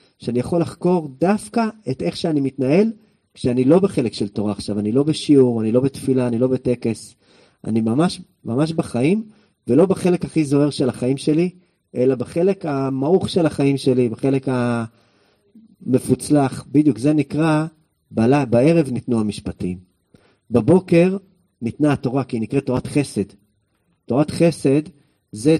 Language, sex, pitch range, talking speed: English, male, 110-150 Hz, 135 wpm